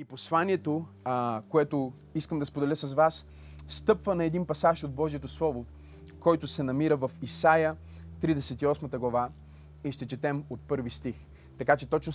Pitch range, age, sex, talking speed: 135-190 Hz, 30-49, male, 155 wpm